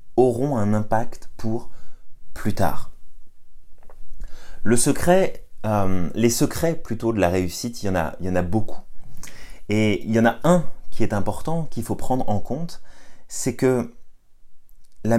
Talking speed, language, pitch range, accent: 160 wpm, French, 105-135 Hz, French